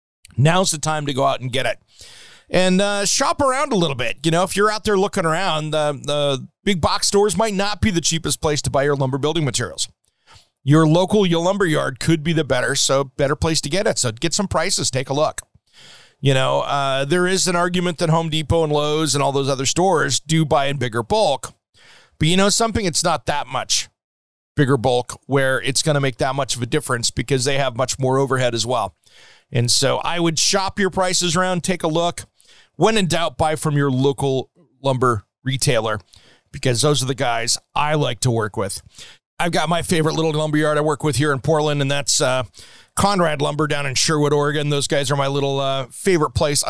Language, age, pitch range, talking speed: English, 40-59, 135-165 Hz, 220 wpm